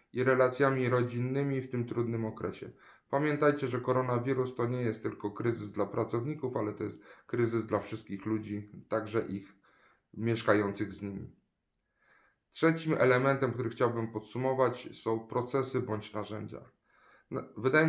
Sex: male